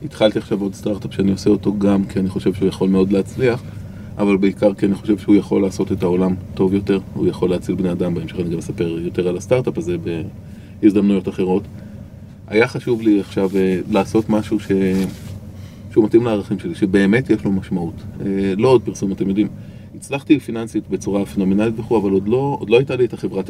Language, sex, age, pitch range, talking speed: Hebrew, male, 30-49, 100-115 Hz, 195 wpm